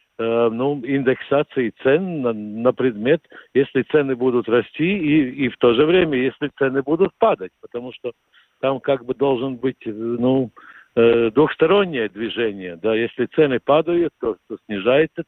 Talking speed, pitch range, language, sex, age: 145 wpm, 125-155 Hz, Russian, male, 60-79